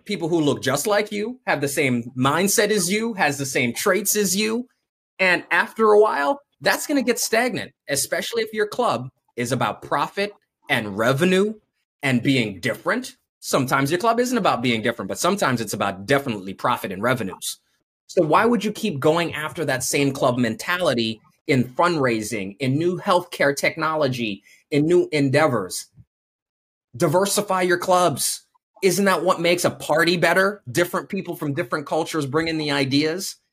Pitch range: 130-200 Hz